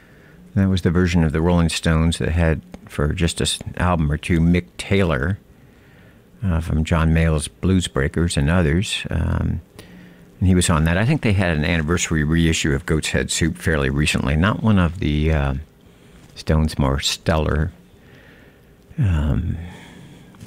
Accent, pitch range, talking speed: American, 80-100 Hz, 160 wpm